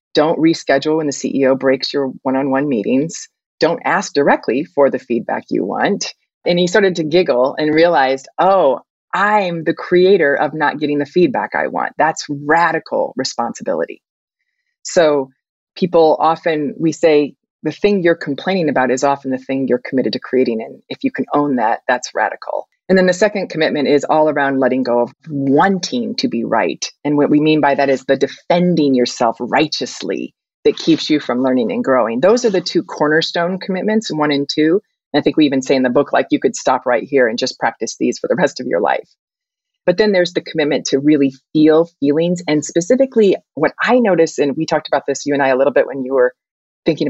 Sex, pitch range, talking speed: female, 140-180 Hz, 205 wpm